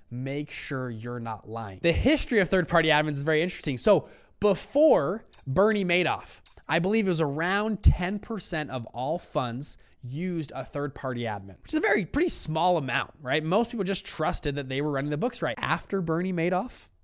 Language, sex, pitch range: English, male, 120-170 Hz